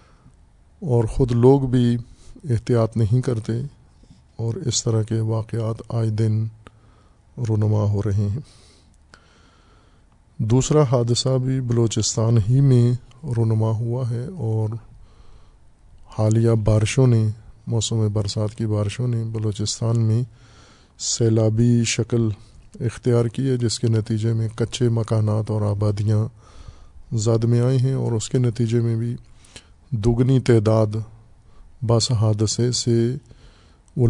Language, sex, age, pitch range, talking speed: Urdu, male, 20-39, 110-120 Hz, 115 wpm